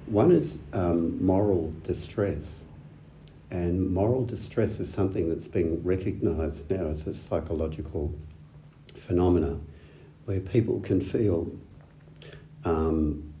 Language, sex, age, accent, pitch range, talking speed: English, male, 60-79, Australian, 75-90 Hz, 105 wpm